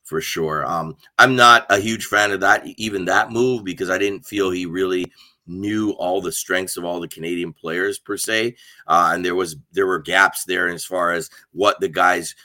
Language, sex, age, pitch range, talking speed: English, male, 30-49, 95-115 Hz, 210 wpm